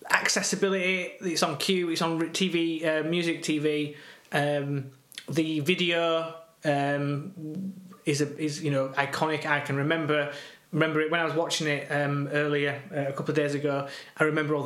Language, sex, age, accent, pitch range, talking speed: English, male, 20-39, British, 145-165 Hz, 170 wpm